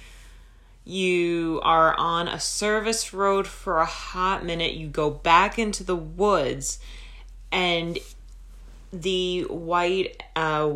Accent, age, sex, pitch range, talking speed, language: American, 30-49, female, 145-185 Hz, 110 wpm, English